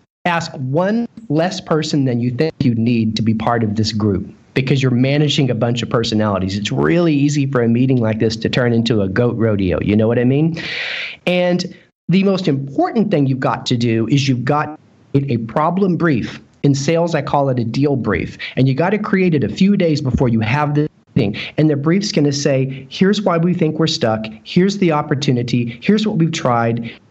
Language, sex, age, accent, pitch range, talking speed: English, male, 40-59, American, 120-165 Hz, 215 wpm